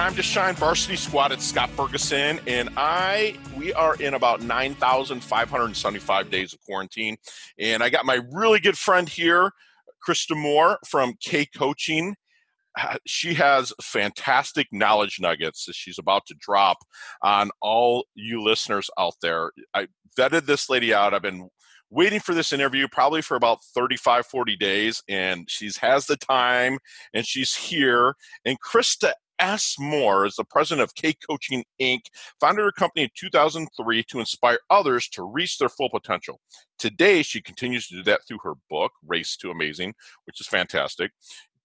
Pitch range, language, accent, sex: 120-170 Hz, English, American, male